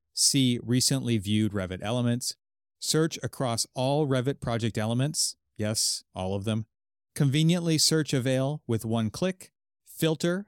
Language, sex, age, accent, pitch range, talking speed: English, male, 30-49, American, 110-140 Hz, 125 wpm